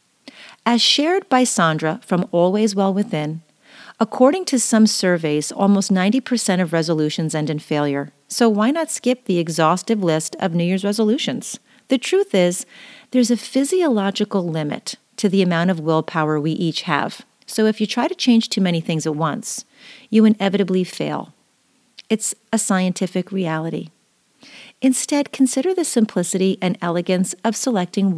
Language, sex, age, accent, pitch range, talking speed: English, female, 40-59, American, 165-245 Hz, 150 wpm